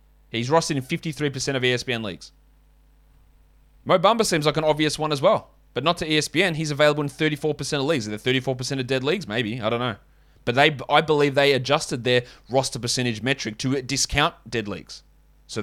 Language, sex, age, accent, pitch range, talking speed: English, male, 20-39, Australian, 125-170 Hz, 195 wpm